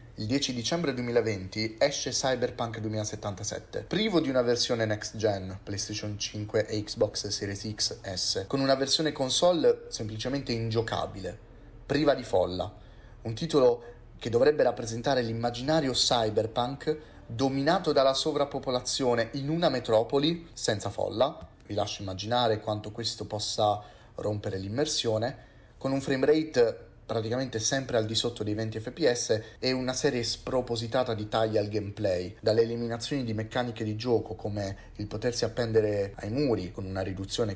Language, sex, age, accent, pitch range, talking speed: Italian, male, 30-49, native, 105-130 Hz, 140 wpm